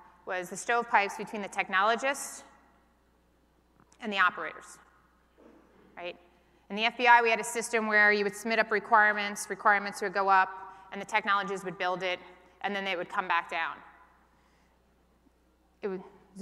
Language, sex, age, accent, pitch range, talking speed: English, female, 20-39, American, 180-215 Hz, 155 wpm